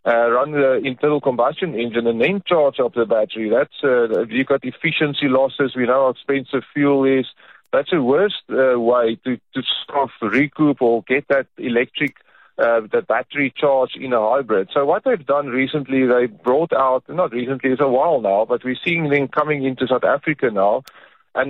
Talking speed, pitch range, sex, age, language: 195 wpm, 125-160 Hz, male, 40-59, English